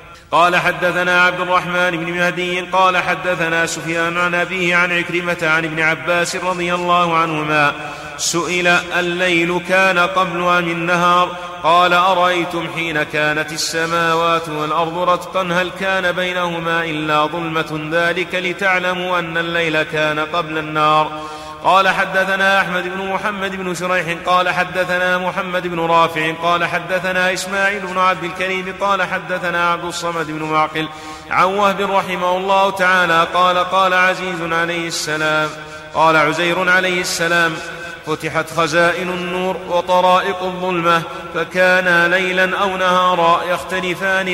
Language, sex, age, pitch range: Arabic, male, 30-49, 165-185 Hz